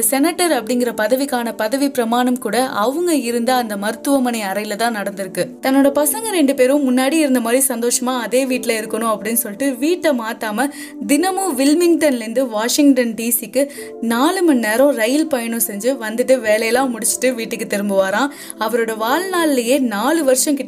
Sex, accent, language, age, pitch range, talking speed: female, native, Tamil, 20-39, 220-280 Hz, 35 wpm